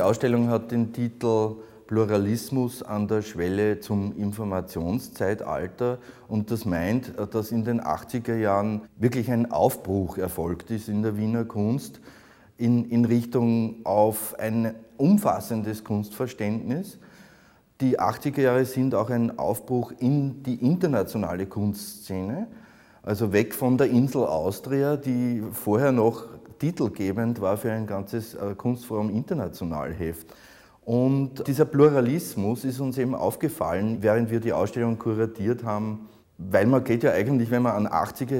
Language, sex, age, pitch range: German, male, 30-49, 100-120 Hz